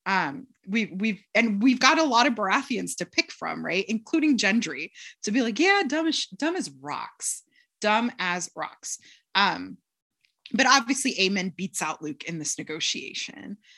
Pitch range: 170-245 Hz